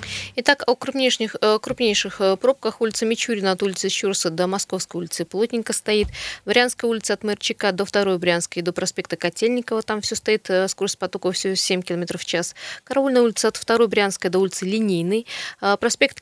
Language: Russian